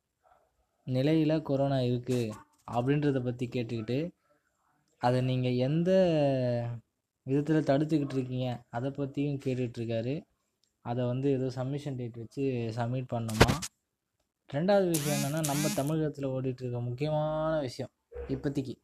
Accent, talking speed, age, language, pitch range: native, 100 wpm, 20-39, Tamil, 125-150 Hz